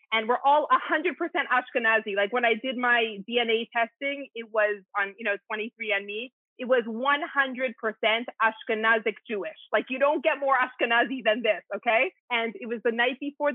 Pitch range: 225-285 Hz